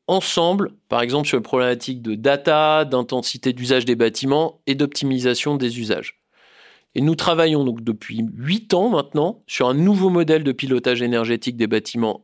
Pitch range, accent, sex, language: 130-175 Hz, French, male, French